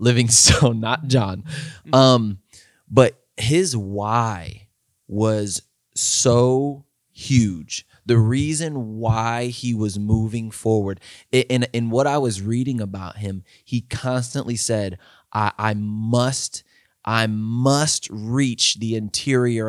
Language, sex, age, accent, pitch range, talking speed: English, male, 20-39, American, 110-130 Hz, 115 wpm